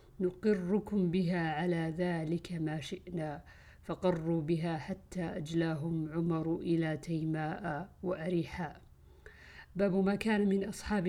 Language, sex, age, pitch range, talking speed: Arabic, female, 50-69, 165-200 Hz, 105 wpm